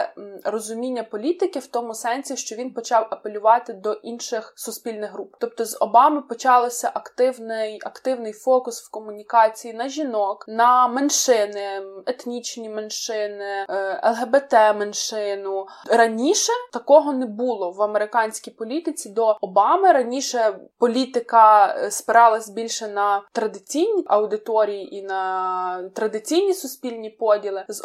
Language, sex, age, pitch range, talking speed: Ukrainian, female, 20-39, 210-250 Hz, 110 wpm